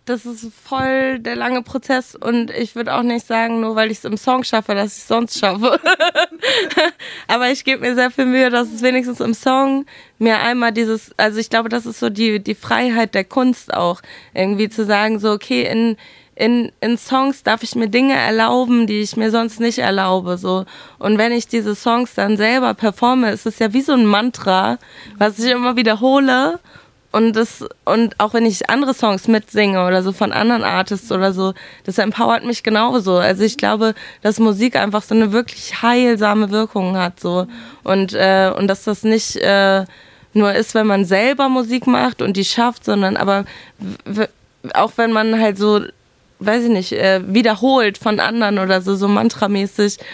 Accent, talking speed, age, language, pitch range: German, 190 wpm, 20-39, German, 205-245 Hz